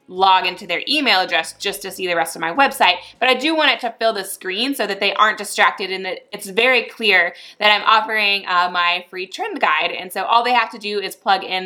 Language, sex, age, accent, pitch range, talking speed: English, female, 20-39, American, 185-245 Hz, 255 wpm